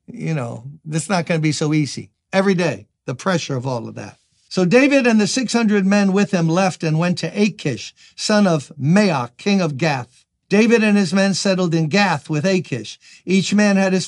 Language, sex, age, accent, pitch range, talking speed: English, male, 60-79, American, 155-205 Hz, 210 wpm